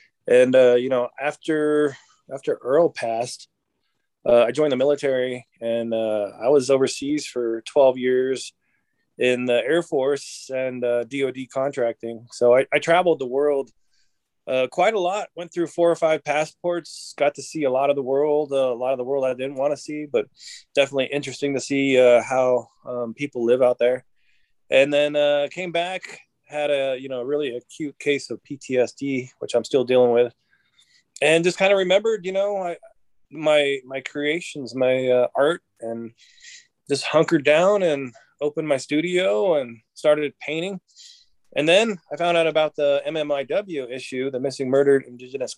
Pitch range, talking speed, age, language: 125-160 Hz, 175 wpm, 20-39, English